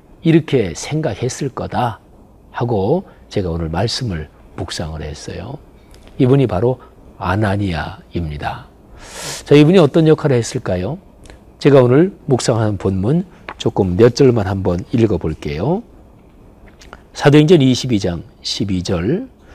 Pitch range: 100-150 Hz